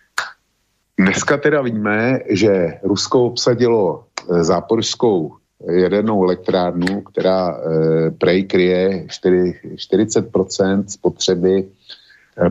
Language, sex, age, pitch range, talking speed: Slovak, male, 50-69, 90-115 Hz, 70 wpm